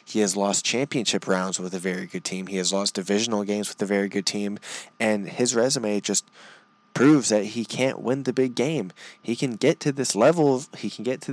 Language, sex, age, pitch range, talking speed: English, male, 20-39, 100-115 Hz, 225 wpm